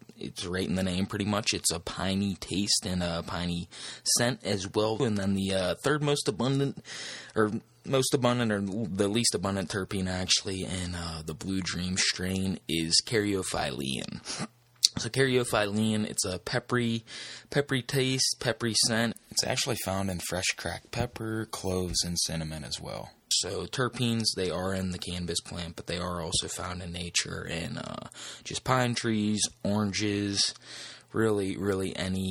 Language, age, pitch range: English, 20-39, 90-115 Hz